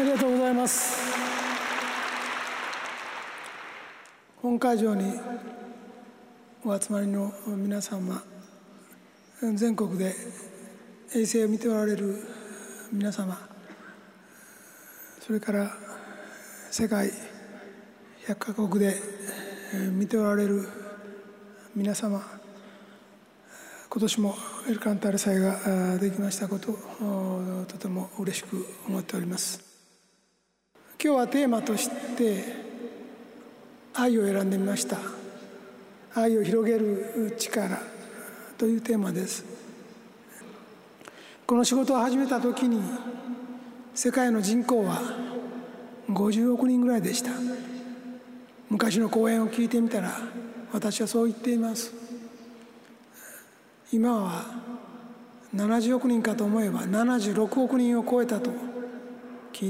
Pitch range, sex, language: 205-240 Hz, male, Japanese